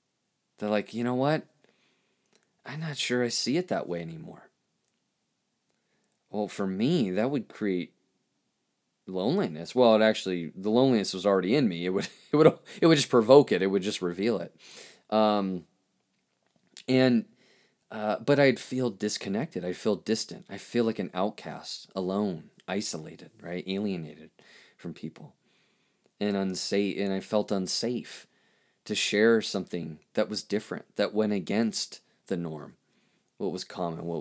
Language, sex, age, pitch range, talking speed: English, male, 30-49, 95-110 Hz, 150 wpm